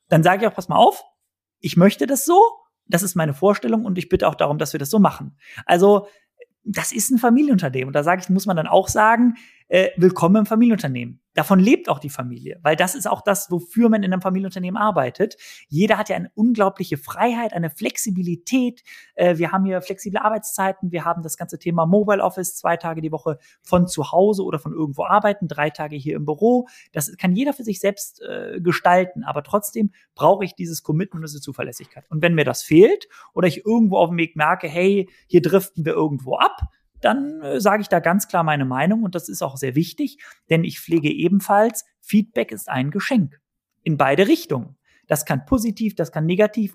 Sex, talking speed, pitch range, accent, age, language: male, 205 wpm, 165-215 Hz, German, 30-49, German